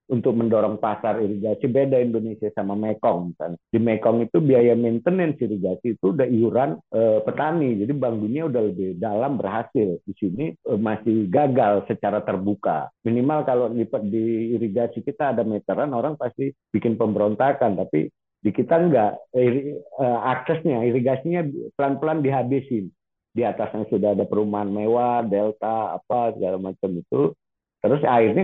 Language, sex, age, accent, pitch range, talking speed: English, male, 50-69, Indonesian, 100-125 Hz, 135 wpm